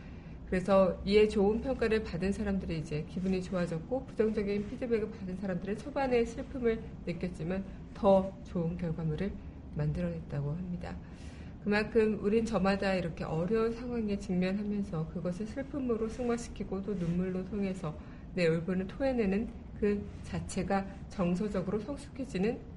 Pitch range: 175-225 Hz